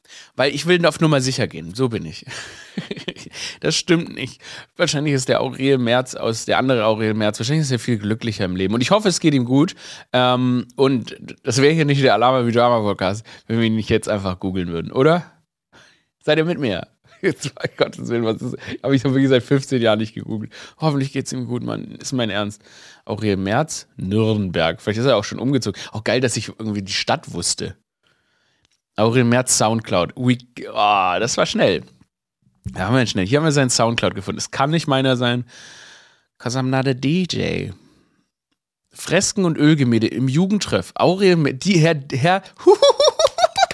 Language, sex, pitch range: German, male, 110-155 Hz